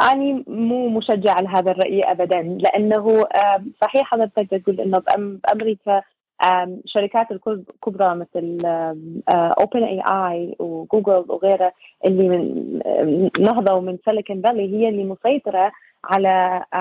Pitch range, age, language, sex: 185-225 Hz, 20-39, English, female